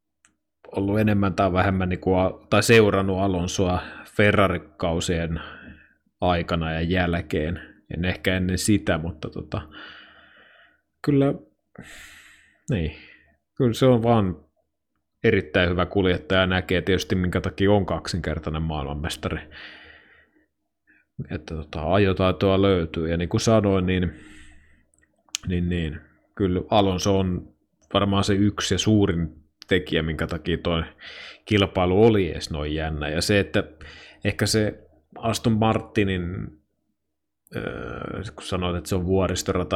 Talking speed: 115 wpm